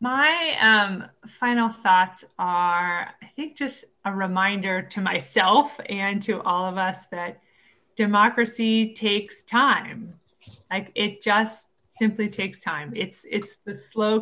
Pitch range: 175-215 Hz